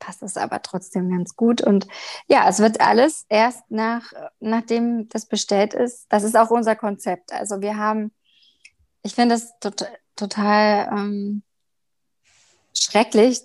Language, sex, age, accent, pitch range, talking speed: German, female, 20-39, German, 200-235 Hz, 145 wpm